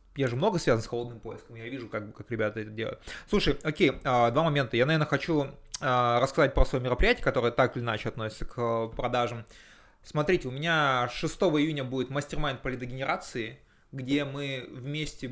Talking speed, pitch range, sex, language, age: 170 wpm, 120-145 Hz, male, Russian, 20-39